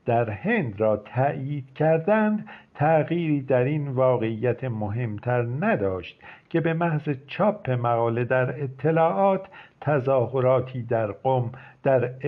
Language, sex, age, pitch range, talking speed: Persian, male, 50-69, 120-155 Hz, 110 wpm